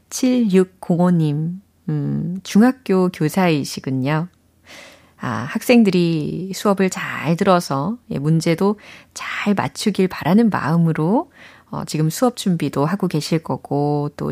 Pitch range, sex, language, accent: 155-215 Hz, female, Korean, native